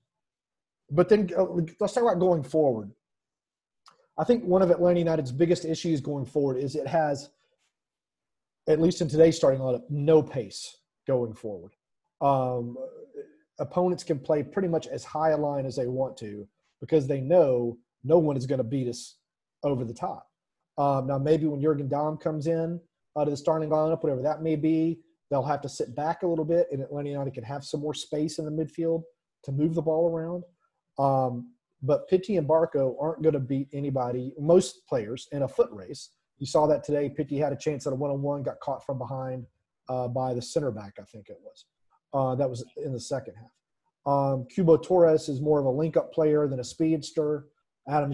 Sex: male